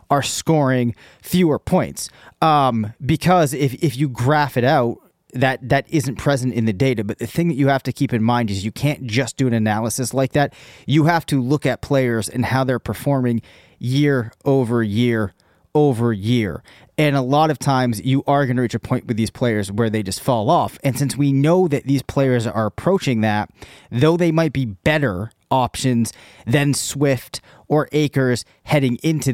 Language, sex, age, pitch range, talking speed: English, male, 30-49, 115-145 Hz, 195 wpm